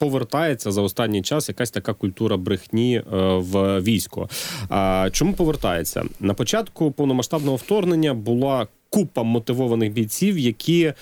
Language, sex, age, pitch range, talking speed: Ukrainian, male, 30-49, 105-140 Hz, 120 wpm